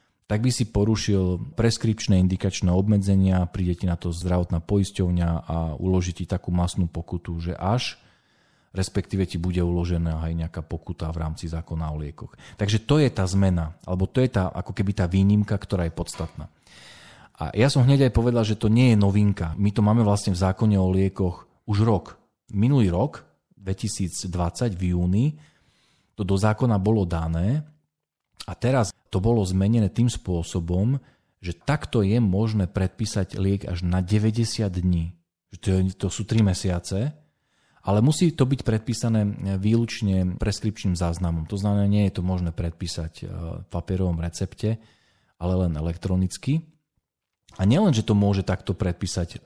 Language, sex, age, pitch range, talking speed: Slovak, male, 40-59, 90-110 Hz, 155 wpm